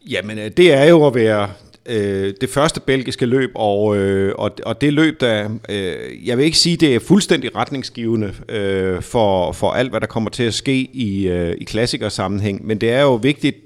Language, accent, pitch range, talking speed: Danish, native, 105-130 Hz, 200 wpm